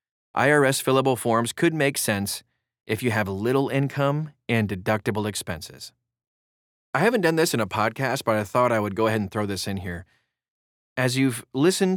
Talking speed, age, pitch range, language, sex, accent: 180 wpm, 30-49, 100-135 Hz, English, male, American